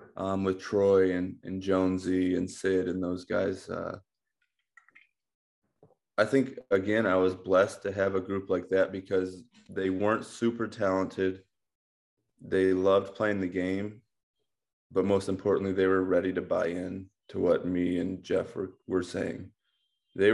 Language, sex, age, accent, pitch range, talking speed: English, male, 20-39, American, 90-100 Hz, 155 wpm